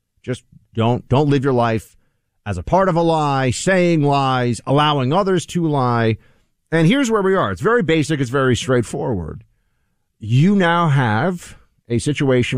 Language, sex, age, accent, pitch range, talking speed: English, male, 50-69, American, 105-140 Hz, 160 wpm